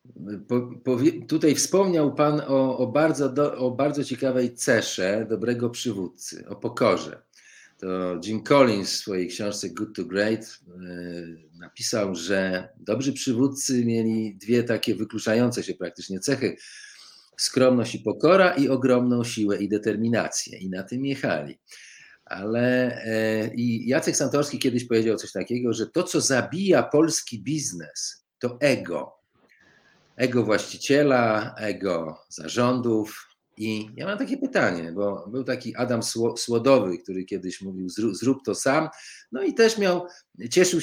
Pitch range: 105-140 Hz